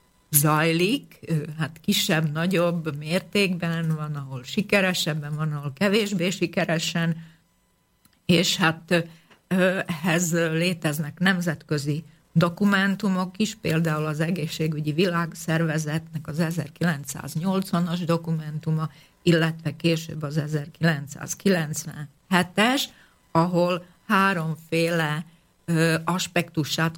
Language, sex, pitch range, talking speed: Slovak, female, 155-180 Hz, 70 wpm